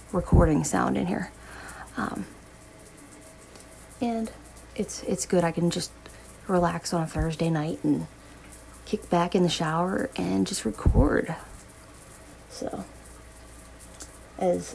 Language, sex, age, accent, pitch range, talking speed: English, female, 30-49, American, 170-240 Hz, 115 wpm